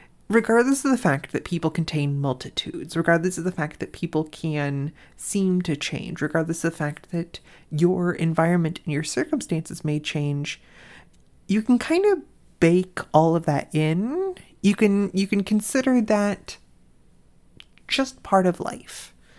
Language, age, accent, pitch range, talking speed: English, 30-49, American, 160-210 Hz, 150 wpm